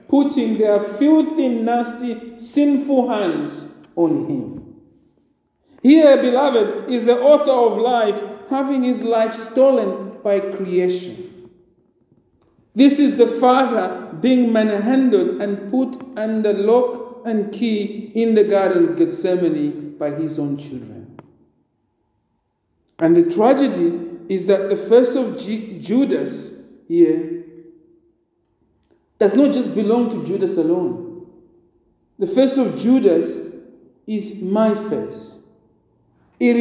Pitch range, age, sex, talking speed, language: 205-280 Hz, 50-69, male, 110 wpm, English